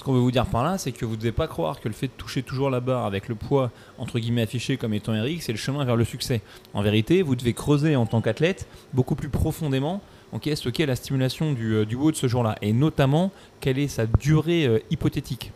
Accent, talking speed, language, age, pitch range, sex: French, 255 wpm, French, 20-39, 110-145 Hz, male